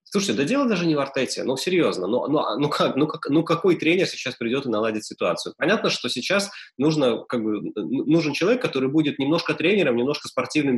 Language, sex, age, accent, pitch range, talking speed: Russian, male, 20-39, native, 120-160 Hz, 205 wpm